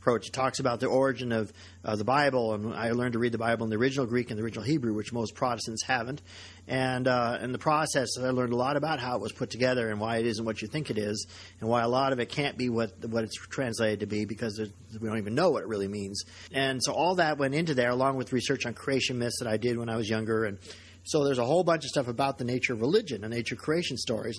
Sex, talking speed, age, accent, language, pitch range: male, 285 wpm, 40-59, American, English, 110-135 Hz